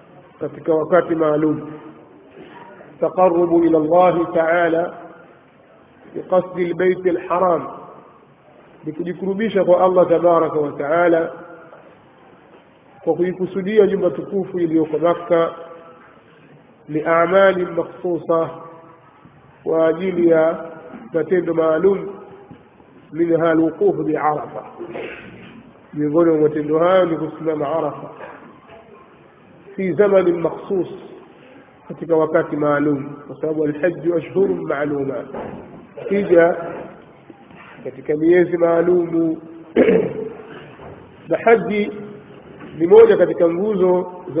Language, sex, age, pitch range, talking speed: Swahili, male, 50-69, 160-185 Hz, 70 wpm